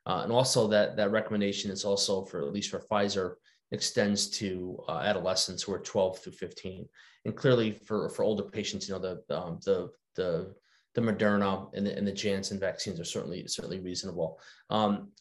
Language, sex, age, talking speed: English, male, 30-49, 185 wpm